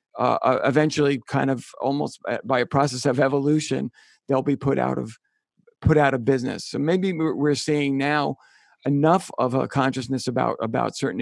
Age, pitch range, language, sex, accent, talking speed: 50-69, 130-150 Hz, English, male, American, 165 wpm